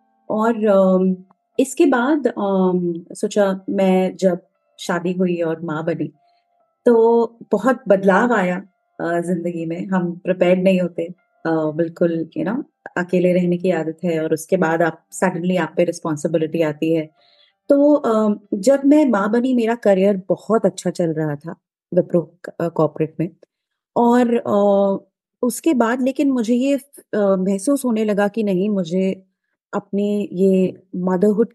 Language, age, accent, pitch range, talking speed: Hindi, 30-49, native, 175-215 Hz, 125 wpm